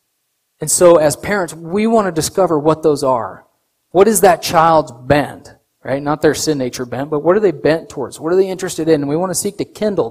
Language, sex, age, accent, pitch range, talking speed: English, male, 30-49, American, 130-170 Hz, 235 wpm